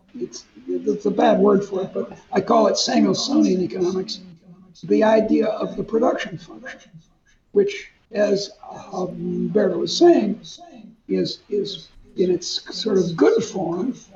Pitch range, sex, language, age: 180-245 Hz, male, English, 60-79